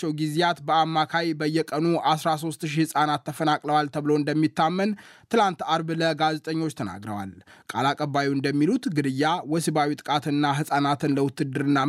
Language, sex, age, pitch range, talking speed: Amharic, male, 20-39, 140-165 Hz, 100 wpm